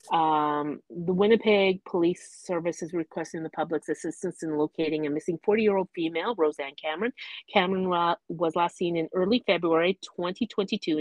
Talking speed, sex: 145 wpm, female